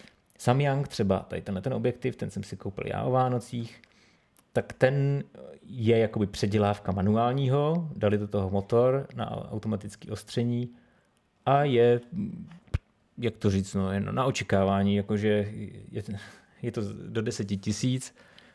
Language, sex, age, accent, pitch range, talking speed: Czech, male, 30-49, native, 100-125 Hz, 135 wpm